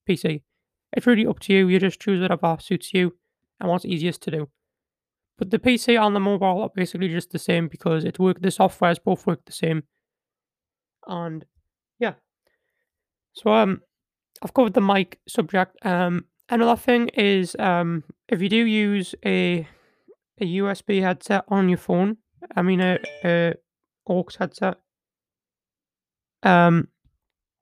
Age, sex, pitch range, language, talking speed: 20-39, male, 180-225 Hz, English, 150 wpm